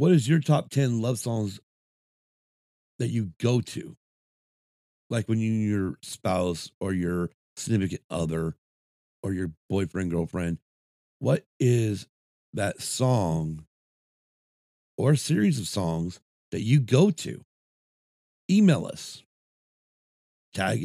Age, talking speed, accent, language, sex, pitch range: 40-59, 110 wpm, American, English, male, 85-120 Hz